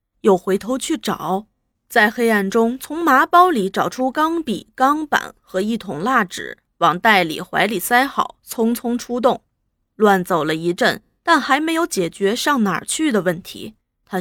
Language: Chinese